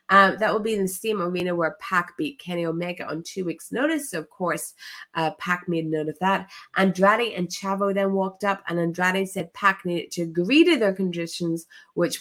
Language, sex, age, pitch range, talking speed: English, female, 20-39, 165-240 Hz, 210 wpm